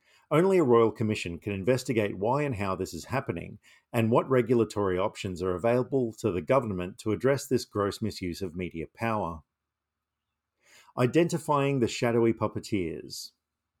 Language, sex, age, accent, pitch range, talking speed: English, male, 50-69, Australian, 95-130 Hz, 145 wpm